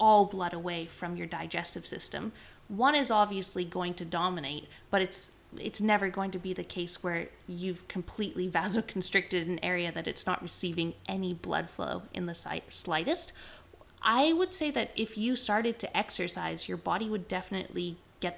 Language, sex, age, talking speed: English, female, 20-39, 170 wpm